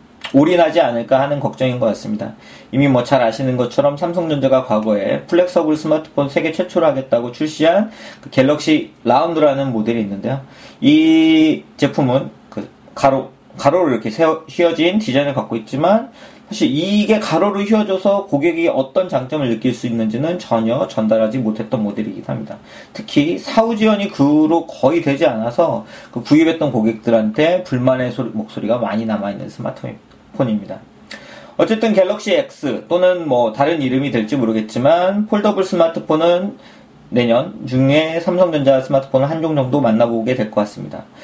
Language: Korean